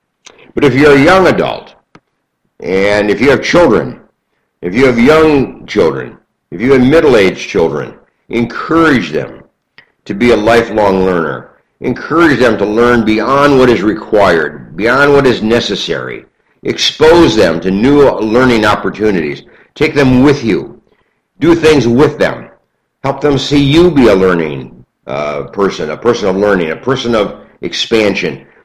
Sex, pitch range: male, 105-140 Hz